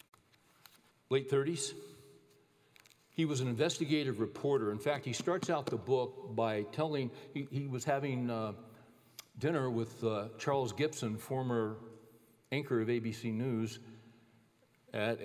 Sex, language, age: male, English, 60-79